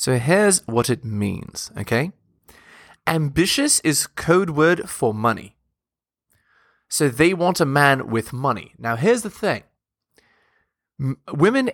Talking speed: 125 wpm